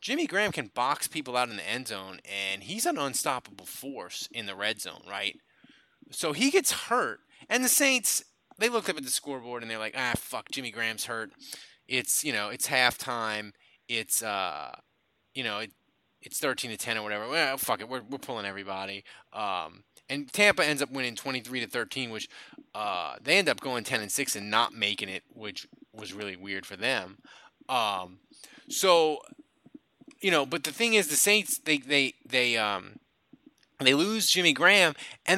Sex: male